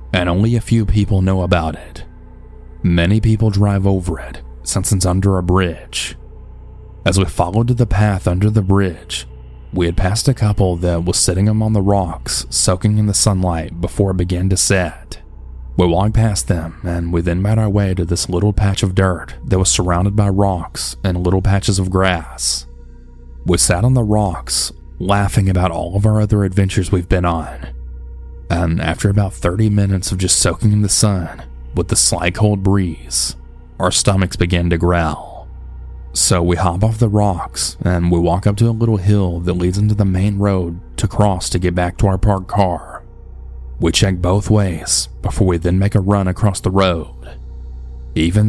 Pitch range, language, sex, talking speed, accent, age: 80-100 Hz, English, male, 190 wpm, American, 30-49